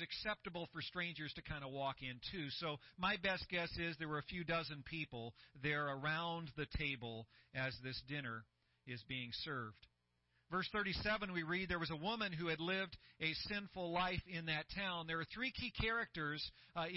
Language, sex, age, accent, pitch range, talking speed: English, male, 40-59, American, 135-175 Hz, 185 wpm